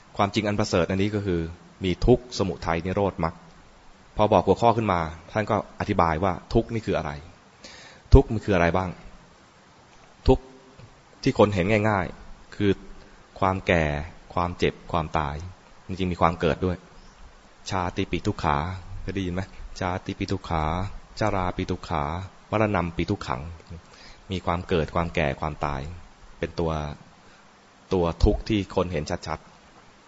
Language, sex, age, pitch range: English, male, 20-39, 85-105 Hz